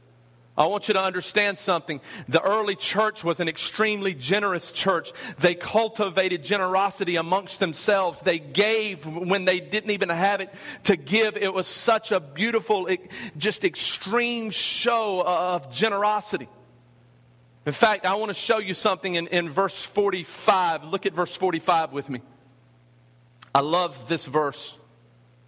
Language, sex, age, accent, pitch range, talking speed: English, male, 40-59, American, 125-200 Hz, 145 wpm